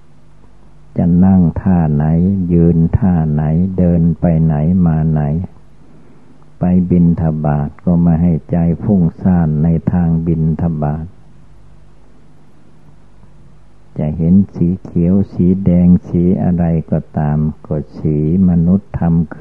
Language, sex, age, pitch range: Thai, male, 60-79, 80-90 Hz